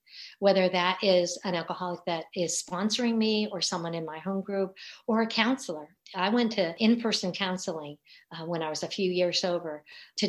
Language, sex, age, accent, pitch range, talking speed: English, female, 50-69, American, 175-210 Hz, 185 wpm